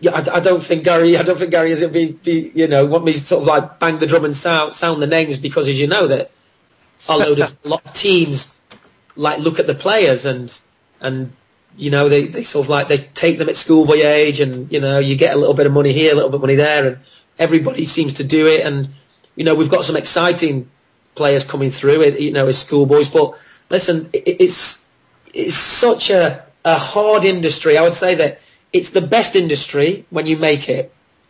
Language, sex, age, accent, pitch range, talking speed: English, male, 30-49, British, 145-175 Hz, 230 wpm